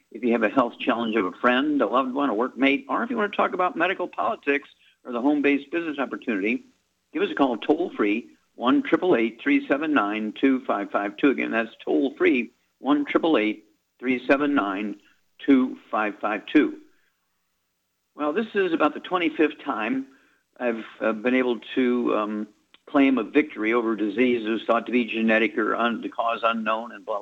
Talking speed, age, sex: 175 wpm, 50-69, male